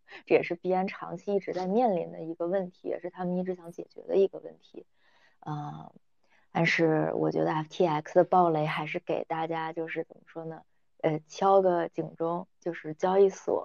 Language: Chinese